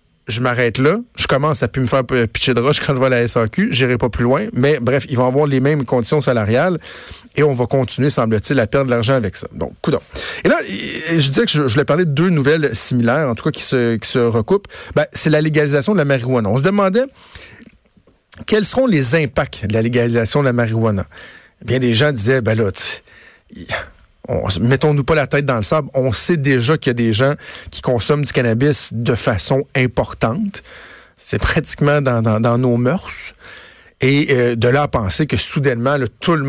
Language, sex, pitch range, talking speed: French, male, 120-150 Hz, 215 wpm